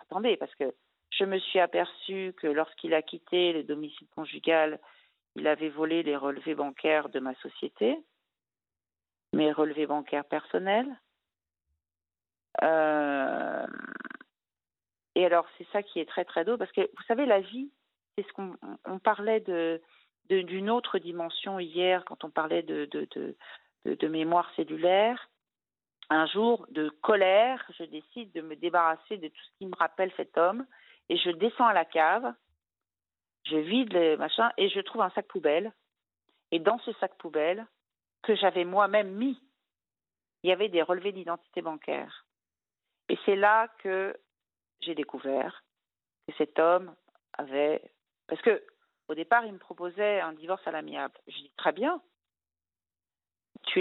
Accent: French